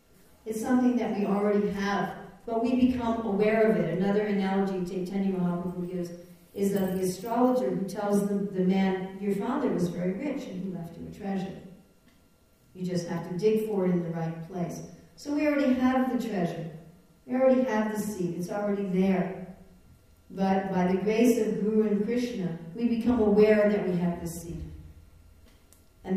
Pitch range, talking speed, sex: 175-215 Hz, 180 wpm, female